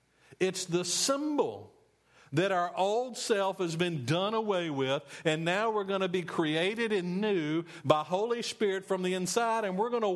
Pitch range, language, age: 170-230 Hz, English, 50-69